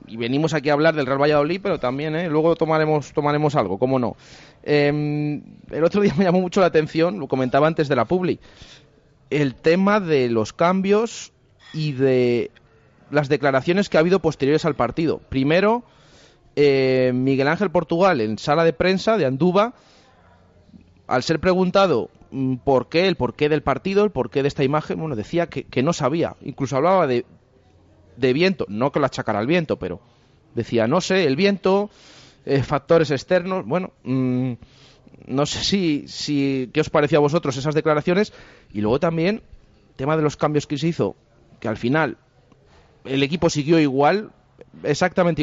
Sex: male